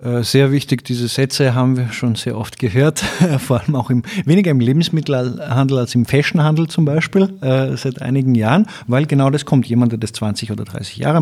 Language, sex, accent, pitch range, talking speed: German, male, German, 120-150 Hz, 195 wpm